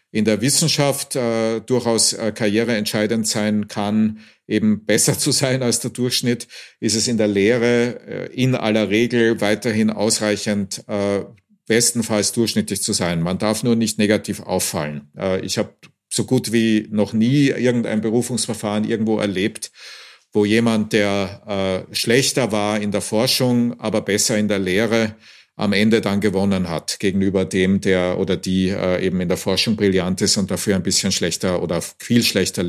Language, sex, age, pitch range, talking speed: German, male, 50-69, 105-120 Hz, 165 wpm